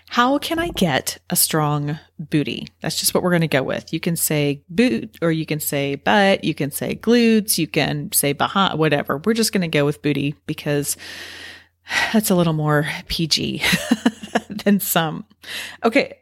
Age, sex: 30-49, female